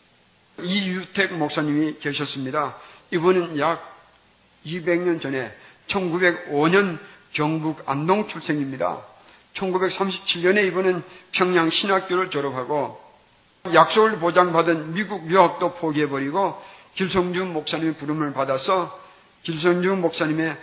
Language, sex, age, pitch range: Korean, male, 50-69, 150-185 Hz